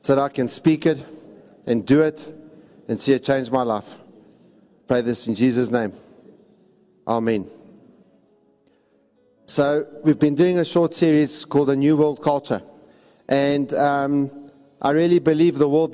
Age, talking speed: 50-69, 150 wpm